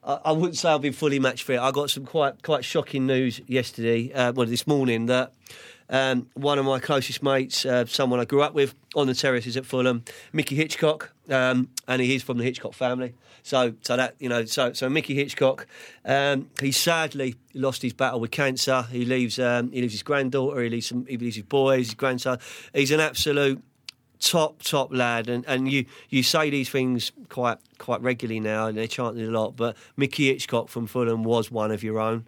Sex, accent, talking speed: male, British, 220 wpm